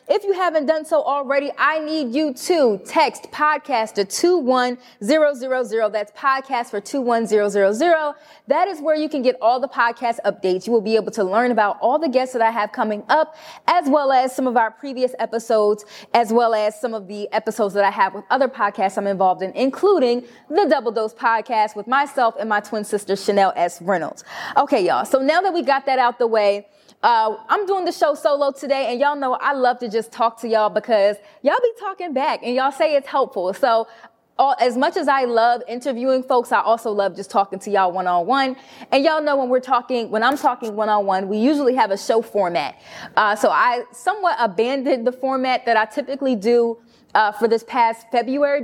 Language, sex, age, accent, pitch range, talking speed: English, female, 20-39, American, 220-285 Hz, 210 wpm